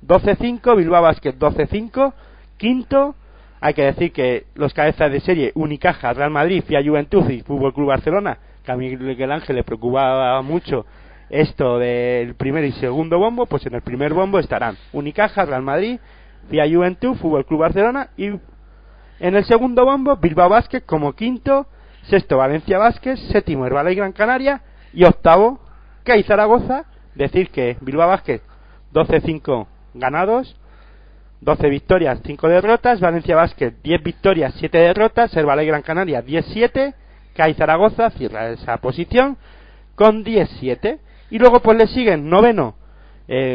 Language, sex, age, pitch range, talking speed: Spanish, male, 40-59, 145-210 Hz, 145 wpm